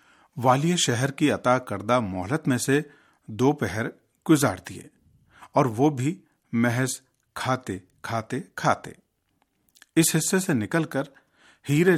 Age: 50-69